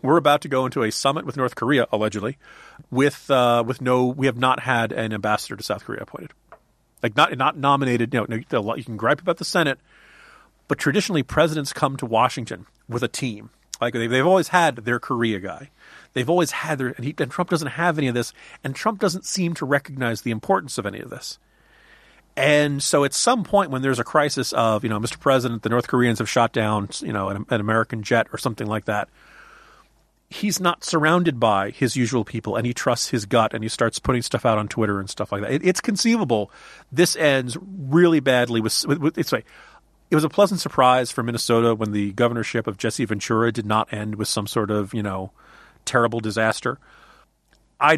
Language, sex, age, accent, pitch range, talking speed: English, male, 40-59, American, 110-145 Hz, 210 wpm